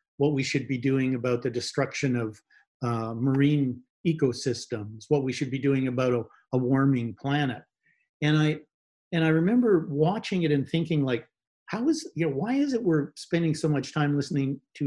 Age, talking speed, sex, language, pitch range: 50-69, 185 wpm, male, English, 125-160 Hz